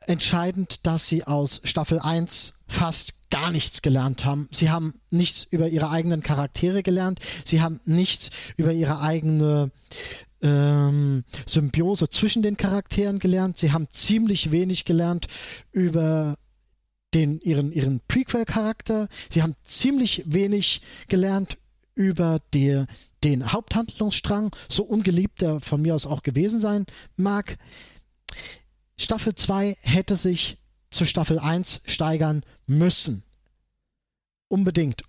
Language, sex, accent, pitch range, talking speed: German, male, German, 145-185 Hz, 120 wpm